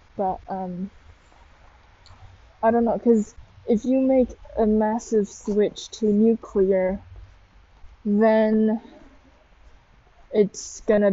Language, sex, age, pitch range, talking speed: English, female, 10-29, 185-220 Hz, 90 wpm